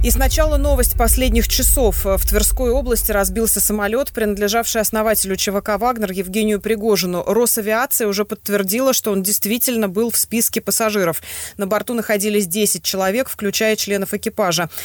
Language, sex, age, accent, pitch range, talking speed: Russian, female, 20-39, native, 185-220 Hz, 135 wpm